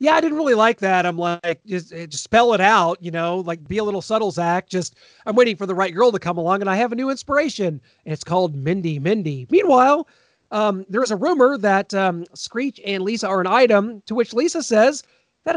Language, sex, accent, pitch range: English, male, American, 180-245 Hz